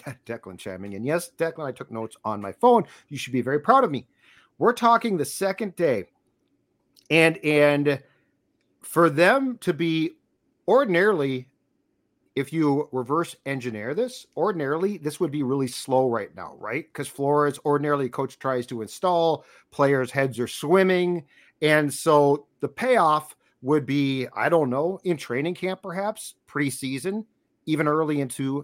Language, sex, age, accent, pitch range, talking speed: English, male, 50-69, American, 135-175 Hz, 150 wpm